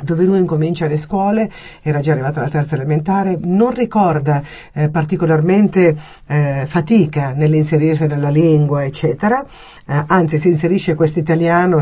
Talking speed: 130 wpm